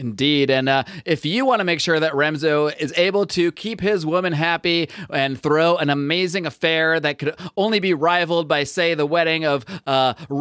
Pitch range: 140-170 Hz